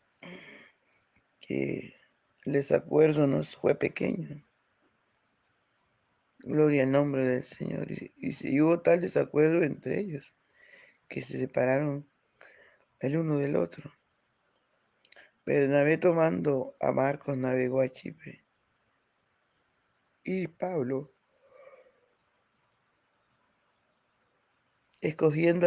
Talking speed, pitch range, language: 85 wpm, 135-170 Hz, Spanish